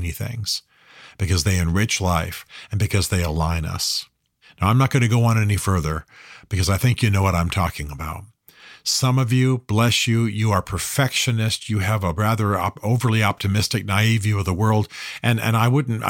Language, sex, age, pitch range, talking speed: English, male, 50-69, 95-125 Hz, 190 wpm